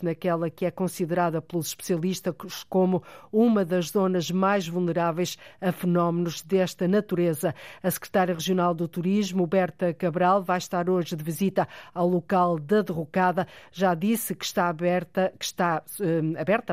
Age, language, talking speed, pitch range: 50-69, Portuguese, 135 wpm, 175-205 Hz